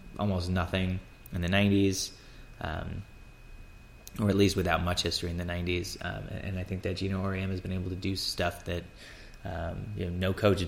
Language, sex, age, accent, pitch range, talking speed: English, male, 20-39, American, 90-100 Hz, 195 wpm